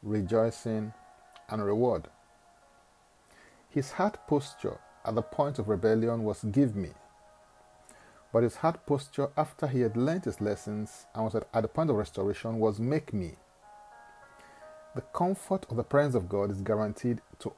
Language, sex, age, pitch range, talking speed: English, male, 40-59, 105-140 Hz, 150 wpm